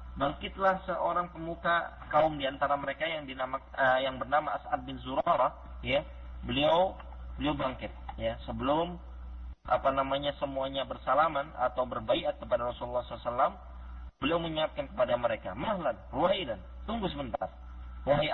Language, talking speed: Malay, 130 wpm